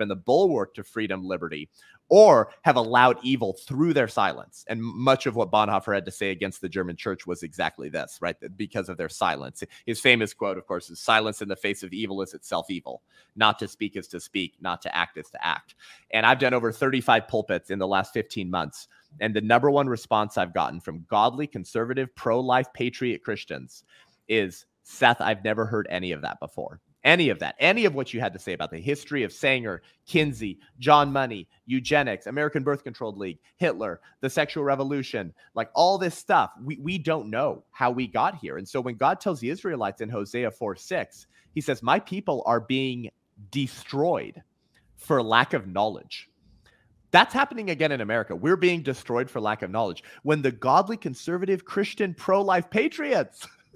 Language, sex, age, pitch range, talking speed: English, male, 30-49, 110-145 Hz, 190 wpm